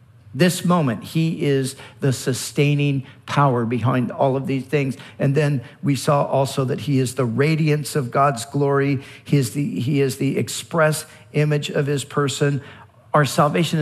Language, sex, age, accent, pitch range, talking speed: English, male, 50-69, American, 125-170 Hz, 165 wpm